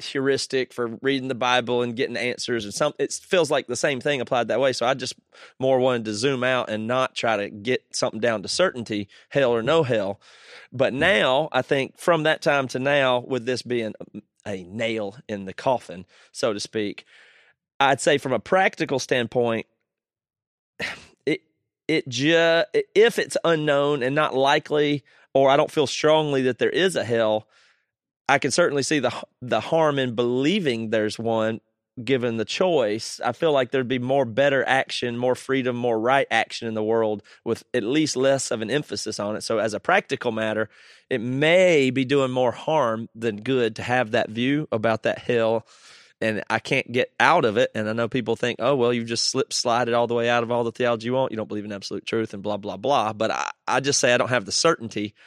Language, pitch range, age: English, 115-140 Hz, 30-49